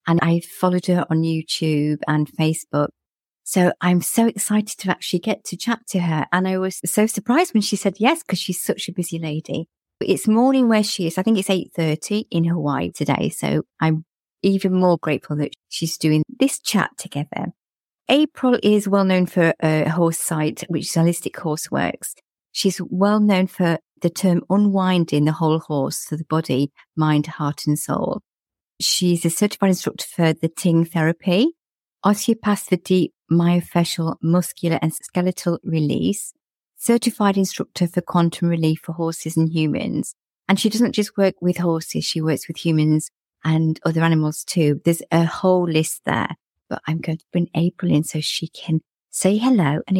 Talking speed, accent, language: 175 wpm, British, English